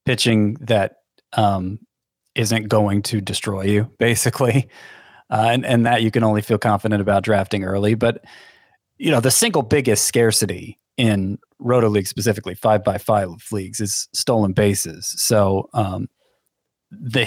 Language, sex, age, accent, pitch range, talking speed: English, male, 30-49, American, 105-120 Hz, 145 wpm